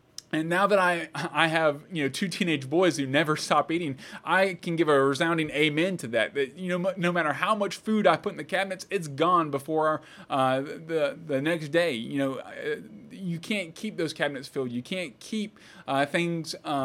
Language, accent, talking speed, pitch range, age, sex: English, American, 205 wpm, 140-180 Hz, 30-49, male